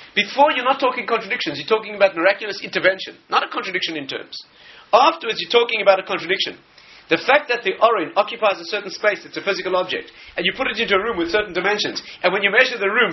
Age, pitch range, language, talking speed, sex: 40-59, 185-240 Hz, English, 230 wpm, male